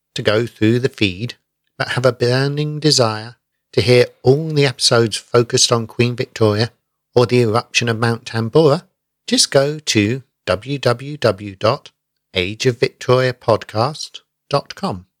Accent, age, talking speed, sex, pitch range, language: British, 50-69, 115 wpm, male, 110-140 Hz, English